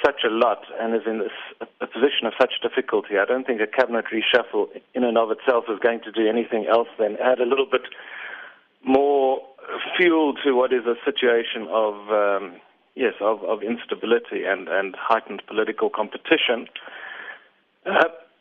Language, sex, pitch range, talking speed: English, male, 120-170 Hz, 170 wpm